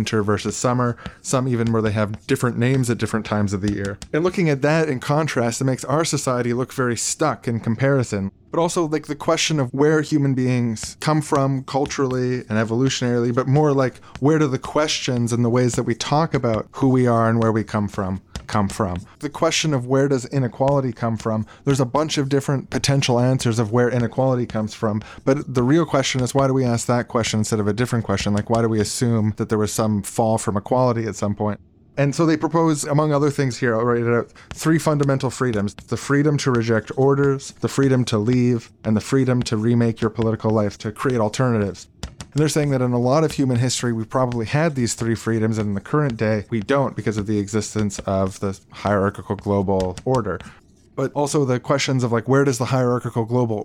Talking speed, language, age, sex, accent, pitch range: 220 wpm, English, 20-39, male, American, 110-135 Hz